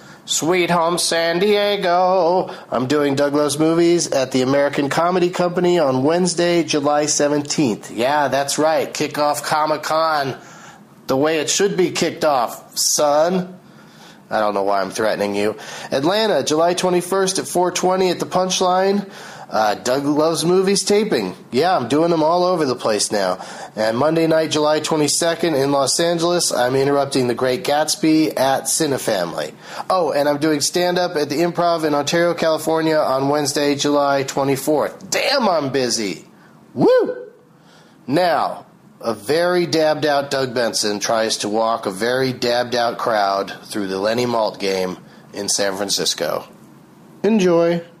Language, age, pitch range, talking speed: English, 40-59, 135-175 Hz, 145 wpm